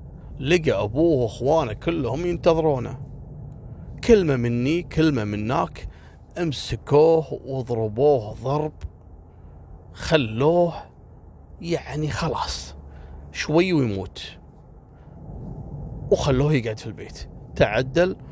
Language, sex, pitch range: Arabic, male, 115-160 Hz